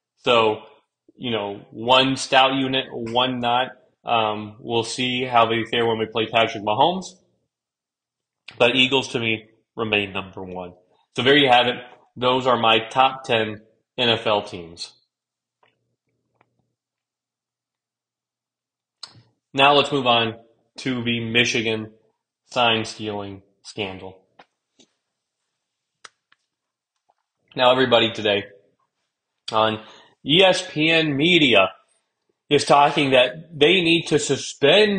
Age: 30-49